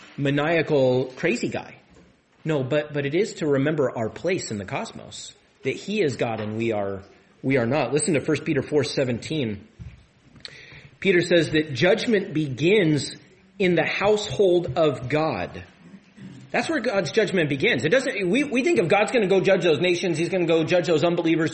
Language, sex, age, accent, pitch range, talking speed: English, male, 30-49, American, 145-200 Hz, 185 wpm